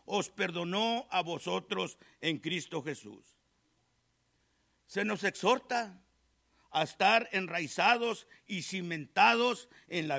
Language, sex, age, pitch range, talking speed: English, male, 50-69, 190-260 Hz, 100 wpm